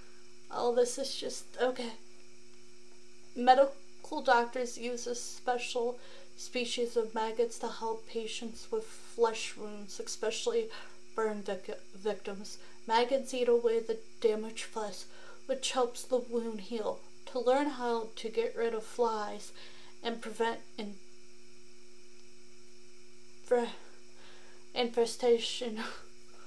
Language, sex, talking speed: English, female, 100 wpm